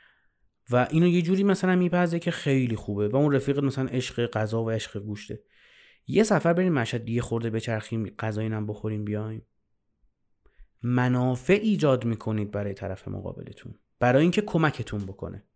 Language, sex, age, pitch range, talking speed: Persian, male, 30-49, 120-170 Hz, 150 wpm